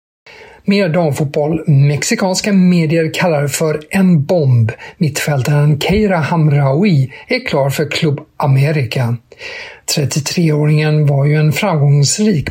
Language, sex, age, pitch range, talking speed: Swedish, male, 50-69, 135-170 Hz, 100 wpm